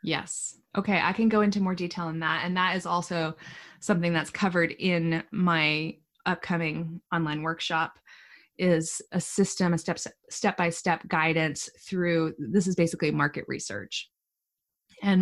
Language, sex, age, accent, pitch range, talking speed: English, female, 20-39, American, 165-205 Hz, 140 wpm